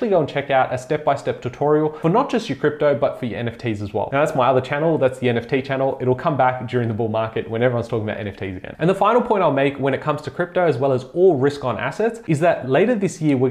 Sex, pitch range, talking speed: male, 125-155 Hz, 285 wpm